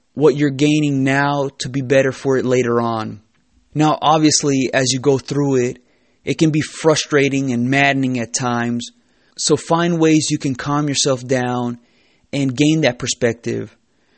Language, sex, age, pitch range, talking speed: English, male, 20-39, 125-145 Hz, 160 wpm